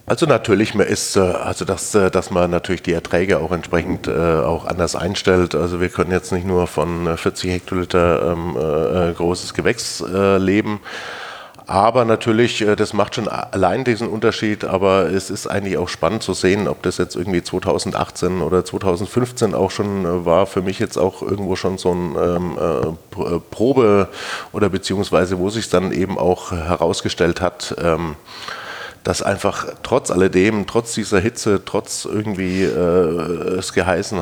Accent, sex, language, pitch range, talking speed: German, male, German, 90-100 Hz, 155 wpm